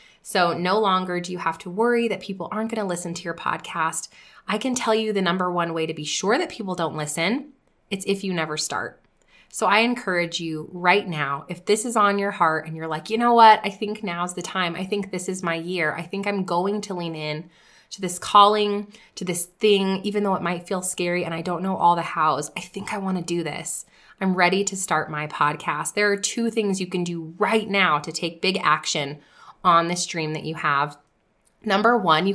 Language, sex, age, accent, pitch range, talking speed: English, female, 20-39, American, 165-210 Hz, 235 wpm